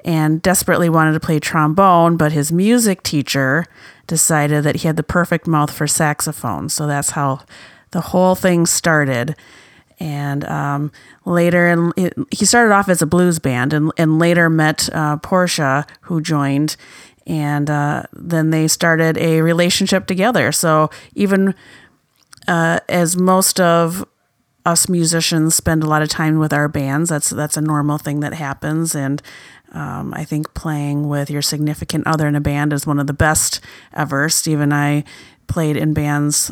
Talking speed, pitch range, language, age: 165 wpm, 150-170 Hz, English, 30-49